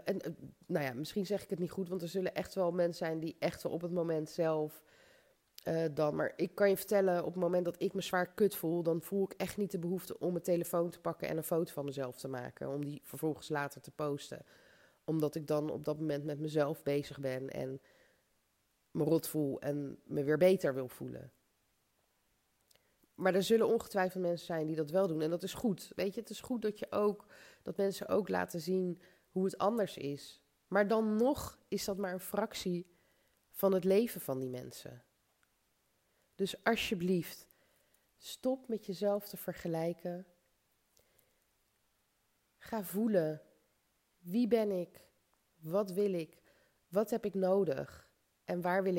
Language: Dutch